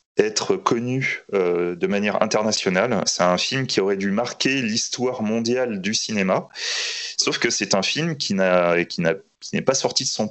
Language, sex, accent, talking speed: French, male, French, 185 wpm